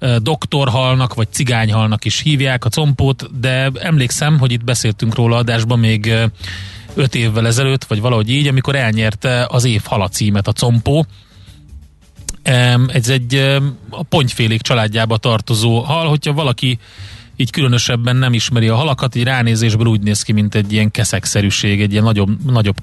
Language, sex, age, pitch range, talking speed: Hungarian, male, 30-49, 110-135 Hz, 145 wpm